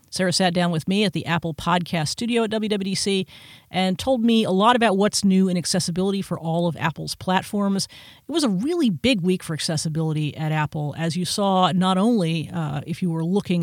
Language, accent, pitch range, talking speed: English, American, 160-195 Hz, 205 wpm